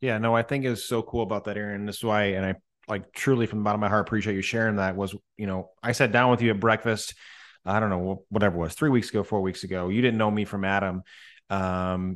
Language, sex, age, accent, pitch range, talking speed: English, male, 30-49, American, 105-125 Hz, 280 wpm